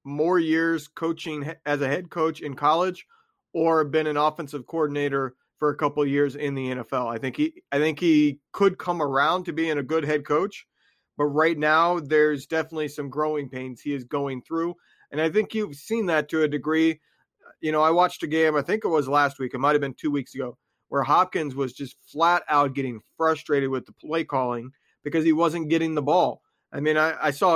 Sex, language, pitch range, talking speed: male, English, 135-160 Hz, 220 wpm